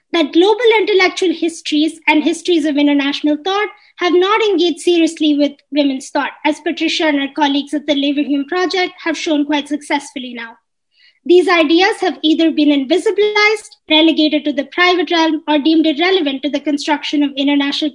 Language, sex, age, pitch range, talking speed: English, female, 20-39, 290-360 Hz, 165 wpm